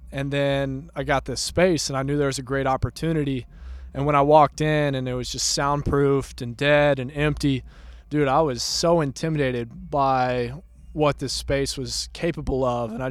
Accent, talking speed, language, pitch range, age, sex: American, 190 wpm, English, 125-145 Hz, 20-39, male